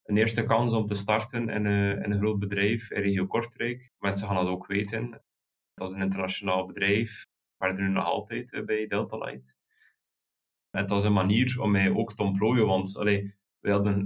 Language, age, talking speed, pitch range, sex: Dutch, 20-39, 195 wpm, 100-115 Hz, male